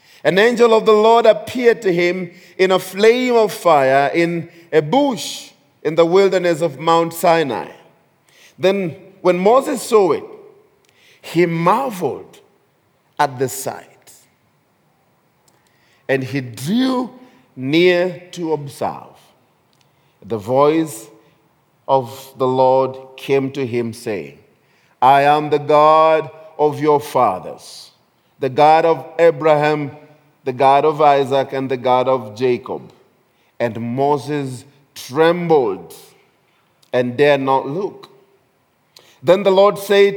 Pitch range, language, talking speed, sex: 145-205 Hz, English, 115 wpm, male